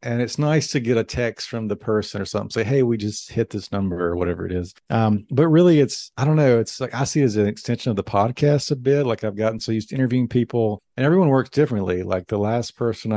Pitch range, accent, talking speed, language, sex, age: 105-130 Hz, American, 270 wpm, English, male, 50-69